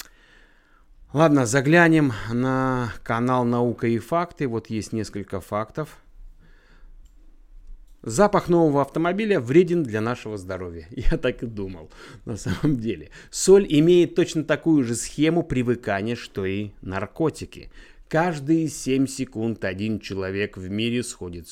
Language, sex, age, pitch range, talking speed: Russian, male, 30-49, 110-145 Hz, 120 wpm